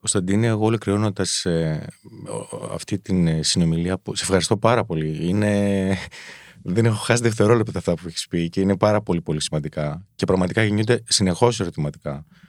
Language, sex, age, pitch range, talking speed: Greek, male, 30-49, 90-120 Hz, 150 wpm